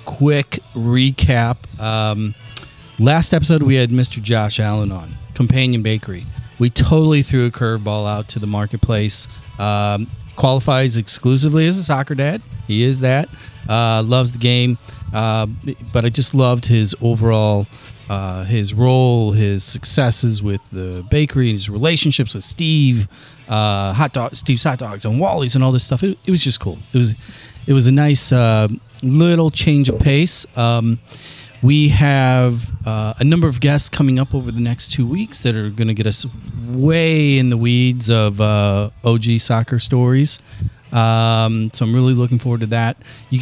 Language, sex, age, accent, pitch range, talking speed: English, male, 30-49, American, 110-135 Hz, 165 wpm